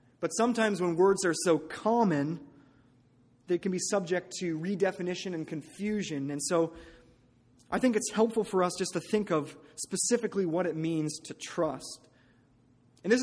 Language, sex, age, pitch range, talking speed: English, male, 30-49, 155-205 Hz, 160 wpm